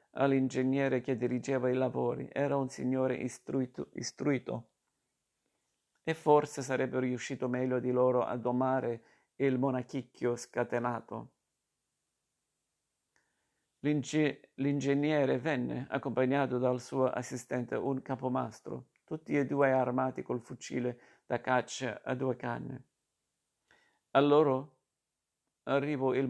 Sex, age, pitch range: male, 50-69, 125-135 Hz